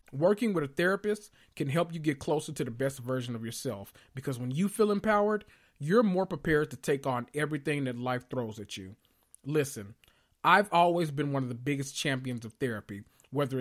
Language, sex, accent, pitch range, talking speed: English, male, American, 130-185 Hz, 195 wpm